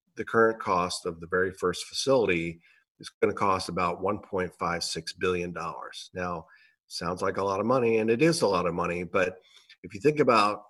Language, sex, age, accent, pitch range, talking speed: English, male, 50-69, American, 90-110 Hz, 190 wpm